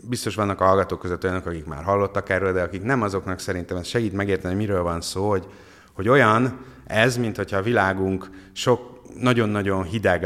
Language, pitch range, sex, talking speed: Hungarian, 95-115 Hz, male, 195 wpm